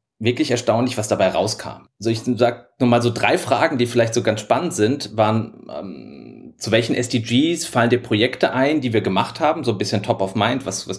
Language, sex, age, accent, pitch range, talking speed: German, male, 30-49, German, 110-135 Hz, 225 wpm